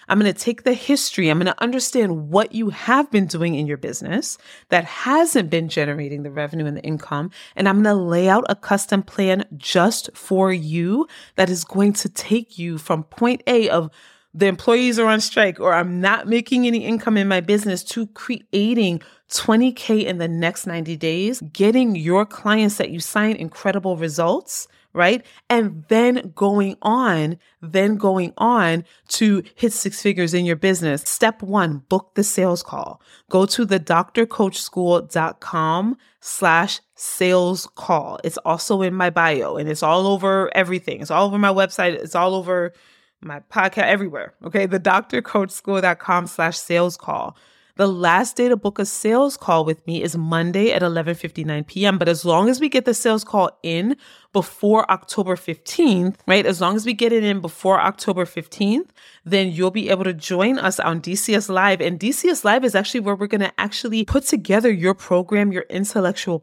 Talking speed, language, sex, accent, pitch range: 185 wpm, English, female, American, 175-220 Hz